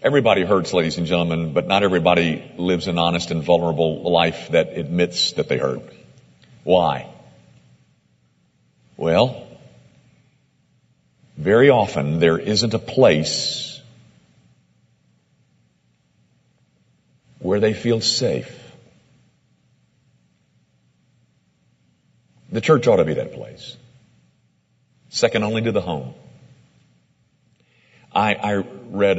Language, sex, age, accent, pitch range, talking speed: English, male, 50-69, American, 80-140 Hz, 95 wpm